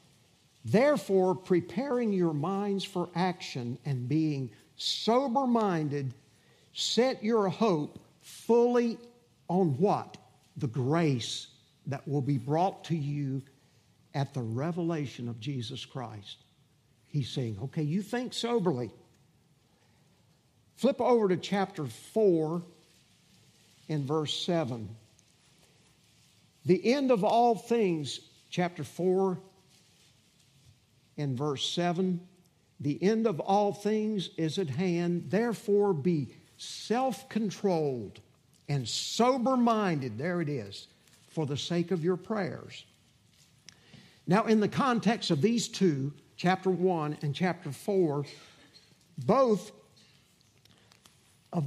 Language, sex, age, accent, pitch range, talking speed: English, male, 50-69, American, 145-200 Hz, 105 wpm